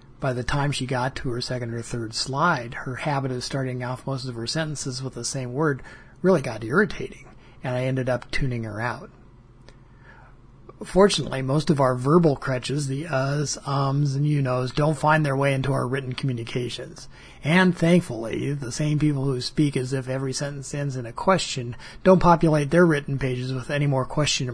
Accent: American